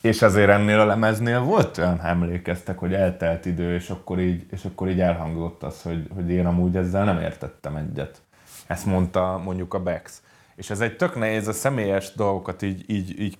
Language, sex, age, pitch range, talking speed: Hungarian, male, 20-39, 90-100 Hz, 195 wpm